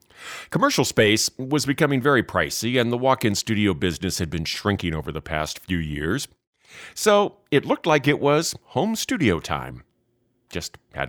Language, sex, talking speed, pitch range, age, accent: English, male, 160 wpm, 90-125 Hz, 40-59, American